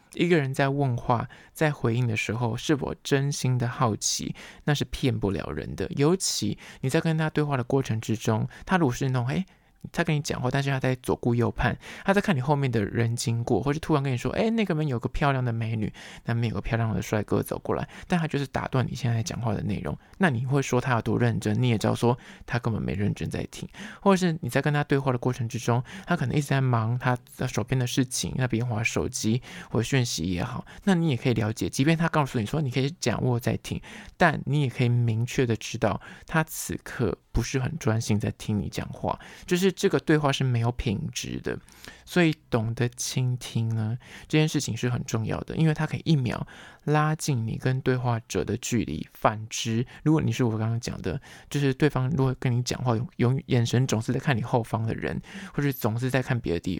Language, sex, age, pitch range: Chinese, male, 20-39, 115-145 Hz